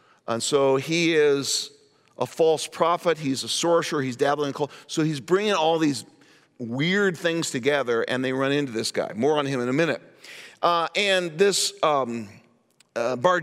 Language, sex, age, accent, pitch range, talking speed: English, male, 50-69, American, 130-175 Hz, 180 wpm